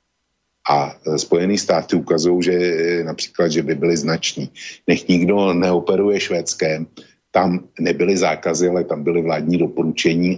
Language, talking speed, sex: Slovak, 125 wpm, male